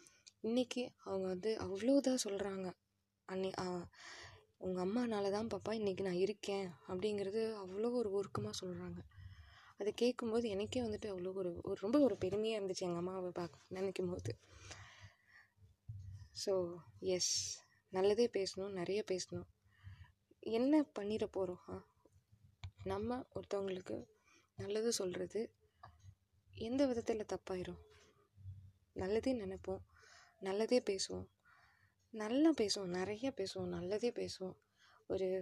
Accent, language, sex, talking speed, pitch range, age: native, Tamil, female, 100 wpm, 175-215 Hz, 20-39